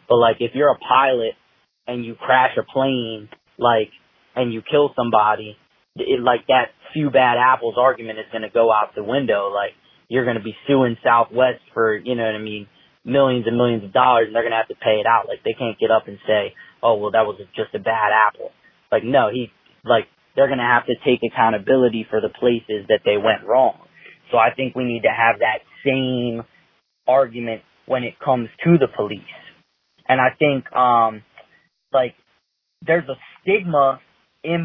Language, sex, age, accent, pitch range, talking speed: English, male, 20-39, American, 115-135 Hz, 195 wpm